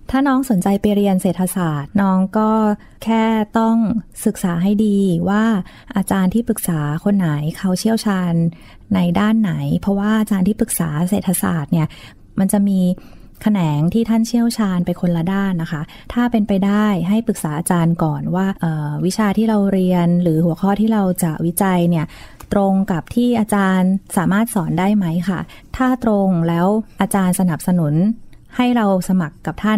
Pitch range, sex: 175-215 Hz, female